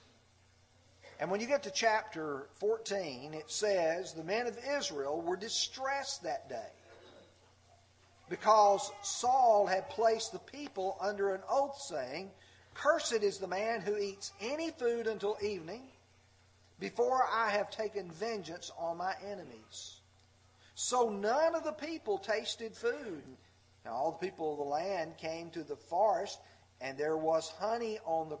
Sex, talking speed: male, 145 wpm